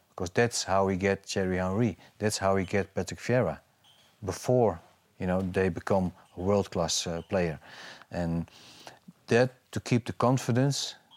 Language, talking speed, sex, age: English, 150 wpm, male, 40-59